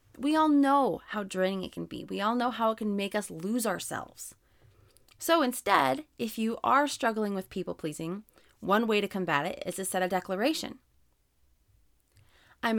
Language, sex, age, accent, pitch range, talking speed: English, female, 30-49, American, 155-240 Hz, 175 wpm